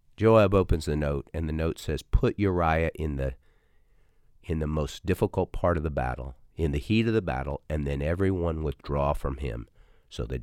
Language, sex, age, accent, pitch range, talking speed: English, male, 50-69, American, 75-95 Hz, 195 wpm